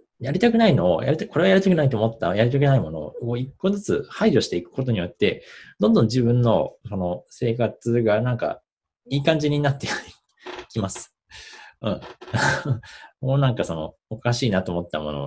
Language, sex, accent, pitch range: Japanese, male, native, 90-135 Hz